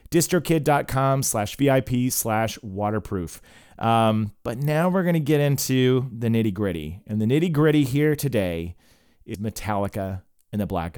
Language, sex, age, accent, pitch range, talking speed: English, male, 30-49, American, 115-145 Hz, 140 wpm